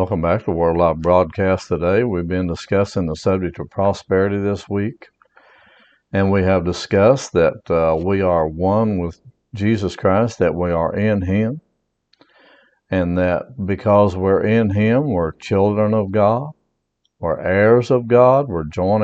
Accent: American